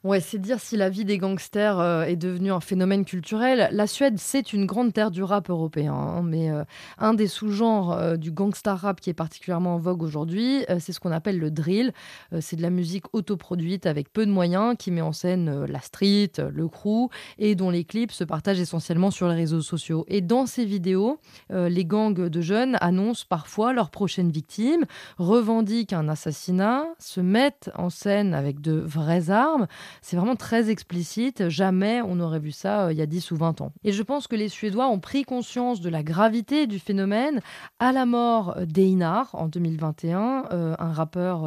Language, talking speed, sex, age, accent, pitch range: French, 205 wpm, female, 20-39, French, 170-215 Hz